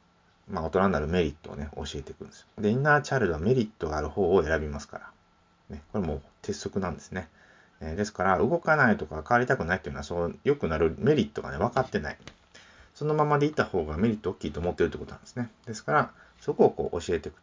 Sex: male